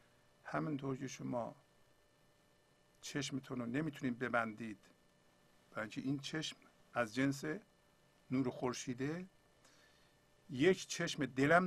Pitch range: 120-155 Hz